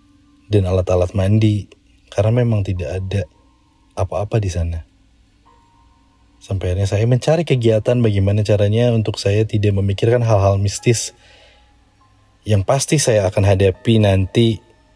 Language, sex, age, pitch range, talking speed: Indonesian, male, 20-39, 95-110 Hz, 110 wpm